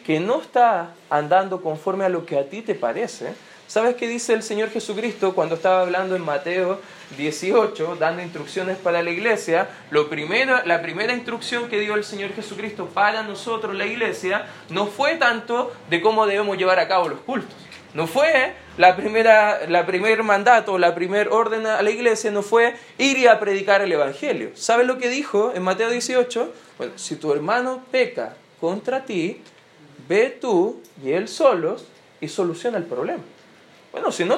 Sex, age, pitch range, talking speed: male, 20-39, 185-245 Hz, 175 wpm